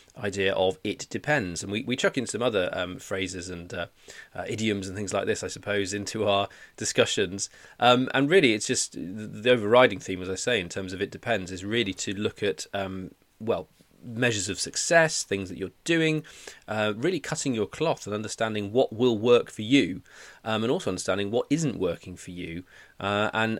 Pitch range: 95-115 Hz